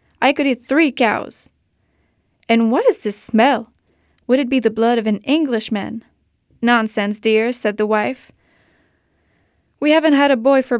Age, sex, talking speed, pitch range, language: 10-29, female, 160 wpm, 210-250 Hz, French